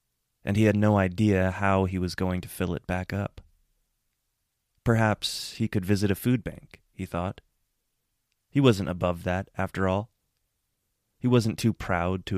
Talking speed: 165 wpm